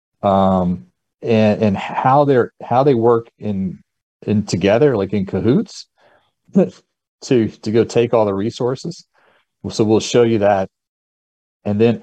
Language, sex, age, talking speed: English, male, 40-59, 140 wpm